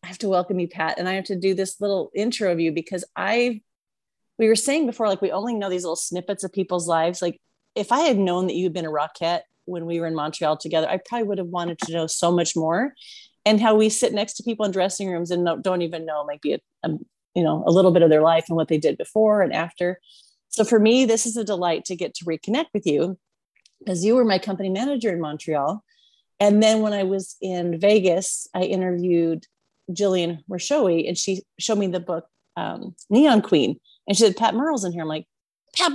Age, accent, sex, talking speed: 30-49, American, female, 235 wpm